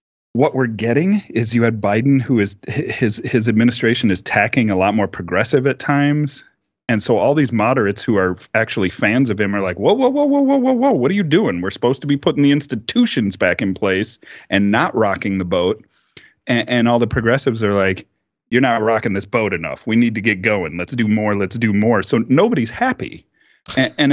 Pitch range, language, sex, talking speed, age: 100-130 Hz, English, male, 220 wpm, 30-49